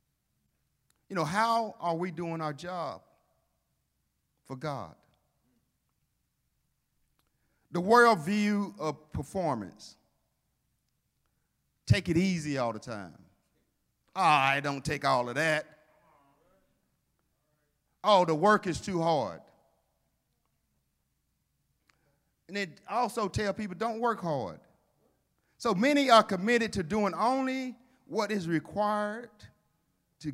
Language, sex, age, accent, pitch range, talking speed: English, male, 50-69, American, 150-225 Hz, 105 wpm